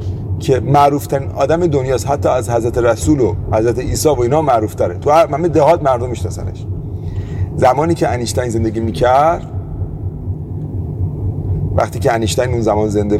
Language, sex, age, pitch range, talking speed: Persian, male, 30-49, 100-150 Hz, 145 wpm